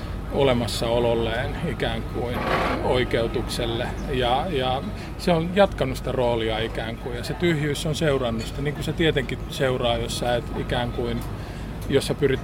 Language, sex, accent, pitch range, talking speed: Finnish, male, native, 120-145 Hz, 150 wpm